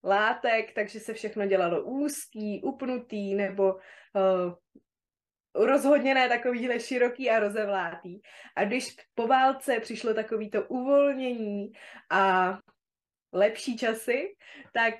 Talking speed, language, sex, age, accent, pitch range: 100 wpm, Czech, female, 20-39, native, 205-260 Hz